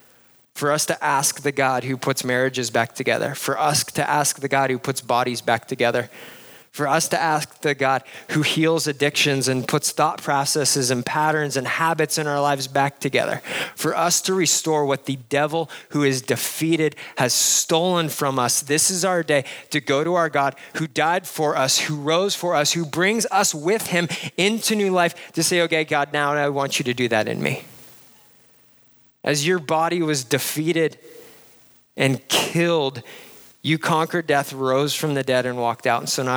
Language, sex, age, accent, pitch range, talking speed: English, male, 30-49, American, 125-155 Hz, 190 wpm